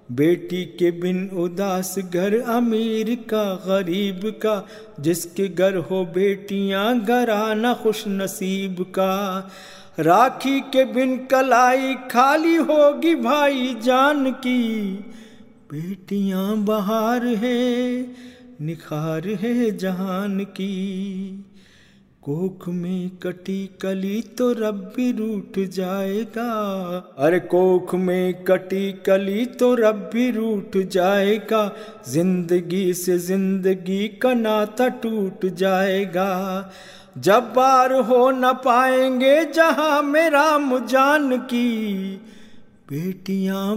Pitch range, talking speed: 190-245 Hz, 95 wpm